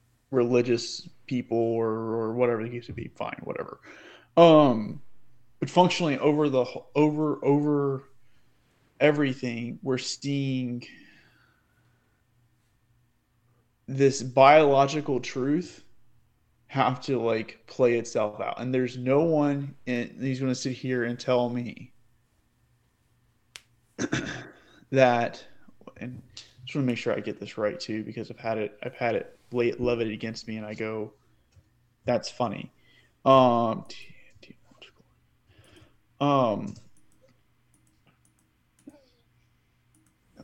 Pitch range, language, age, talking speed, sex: 115-135 Hz, English, 20-39, 105 wpm, male